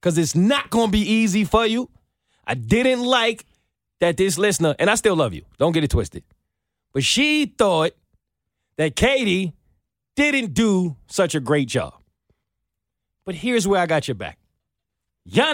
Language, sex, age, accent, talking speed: English, male, 30-49, American, 165 wpm